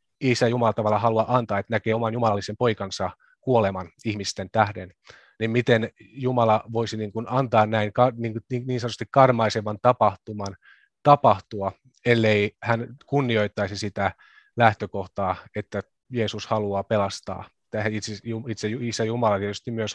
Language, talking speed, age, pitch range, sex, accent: Finnish, 115 wpm, 30-49, 105-125 Hz, male, native